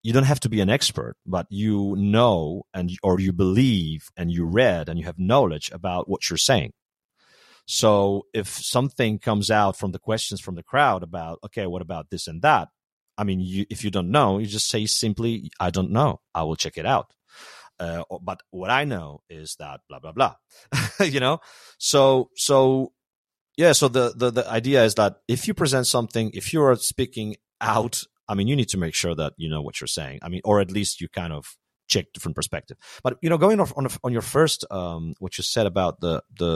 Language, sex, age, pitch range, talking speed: English, male, 40-59, 90-120 Hz, 220 wpm